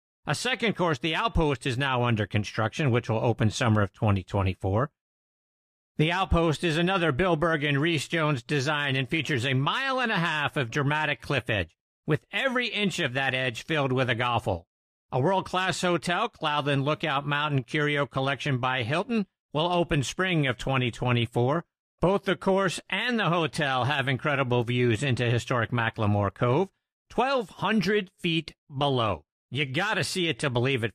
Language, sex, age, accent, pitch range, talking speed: English, male, 50-69, American, 125-175 Hz, 165 wpm